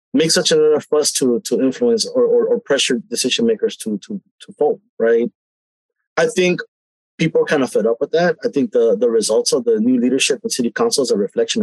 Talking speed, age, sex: 225 wpm, 30-49, male